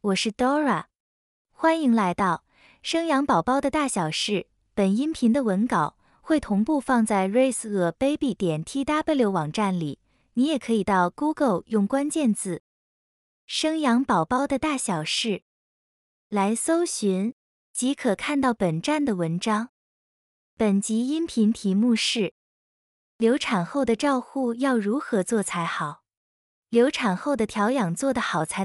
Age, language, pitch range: 20-39, Chinese, 185-270 Hz